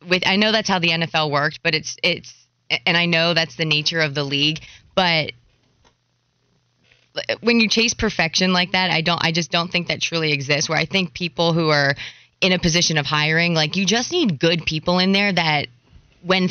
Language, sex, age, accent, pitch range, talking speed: English, female, 20-39, American, 150-180 Hz, 205 wpm